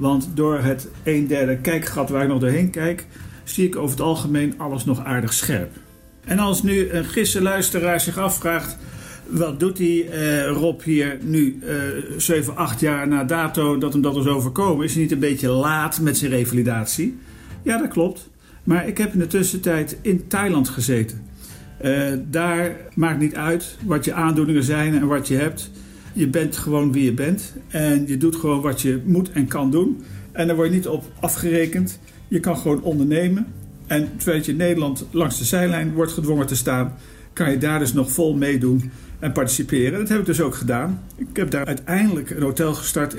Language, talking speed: Dutch, 195 wpm